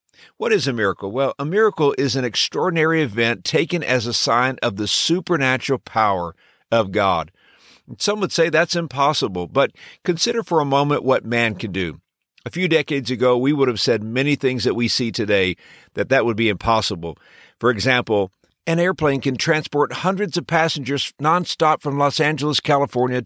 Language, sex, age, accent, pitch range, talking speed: English, male, 50-69, American, 125-155 Hz, 175 wpm